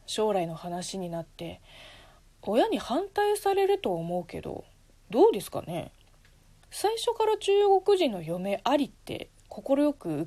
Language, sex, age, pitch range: Japanese, female, 20-39, 165-275 Hz